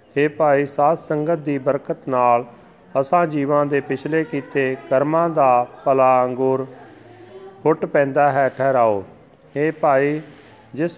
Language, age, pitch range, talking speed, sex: Punjabi, 40-59, 125-150 Hz, 120 wpm, male